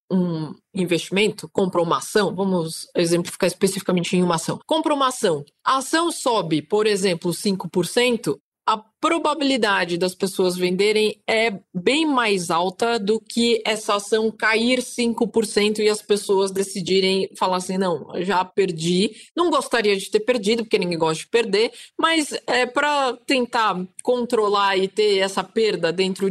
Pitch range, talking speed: 185-235 Hz, 145 wpm